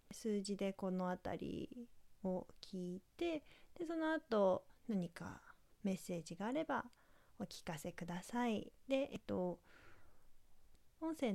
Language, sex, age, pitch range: Japanese, female, 20-39, 180-230 Hz